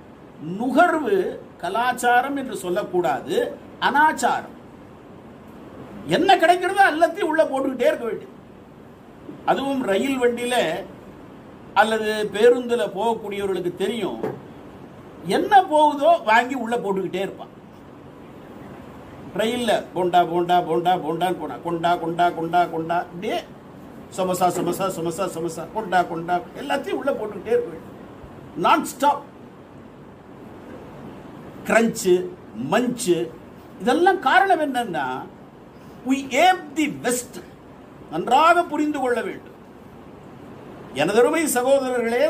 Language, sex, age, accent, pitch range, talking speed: Tamil, male, 50-69, native, 185-315 Hz, 55 wpm